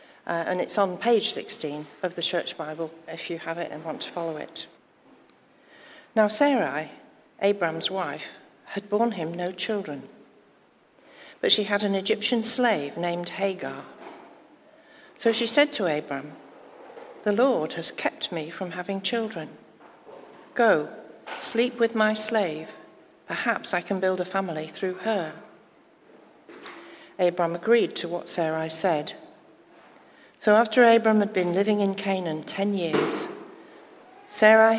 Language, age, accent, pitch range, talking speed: English, 60-79, British, 165-215 Hz, 135 wpm